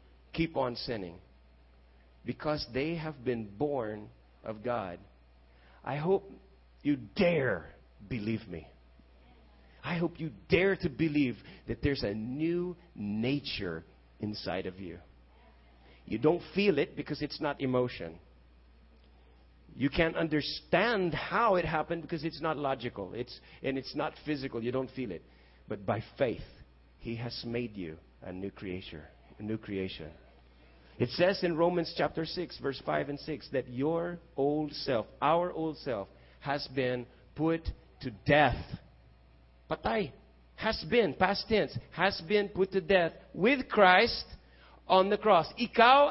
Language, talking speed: English, 140 wpm